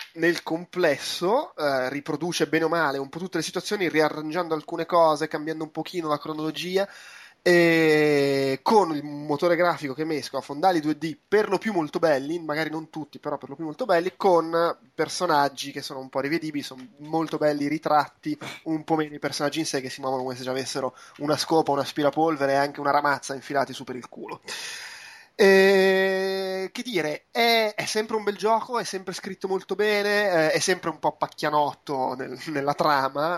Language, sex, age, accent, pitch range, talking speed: Italian, male, 20-39, native, 140-170 Hz, 190 wpm